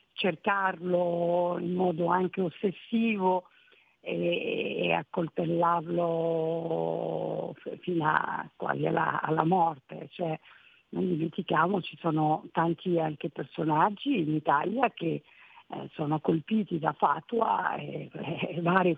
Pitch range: 165-225 Hz